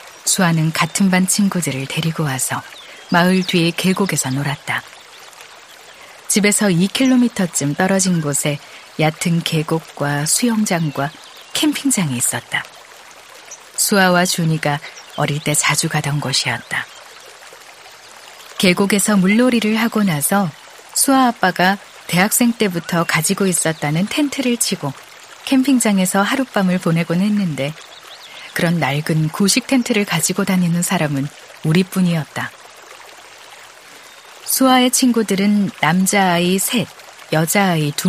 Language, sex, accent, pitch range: Korean, female, native, 155-205 Hz